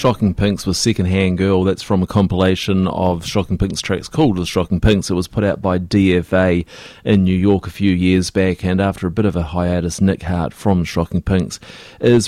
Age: 30-49